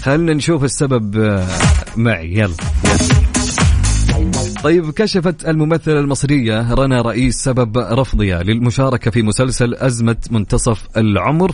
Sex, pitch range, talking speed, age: male, 105-150 Hz, 100 wpm, 30-49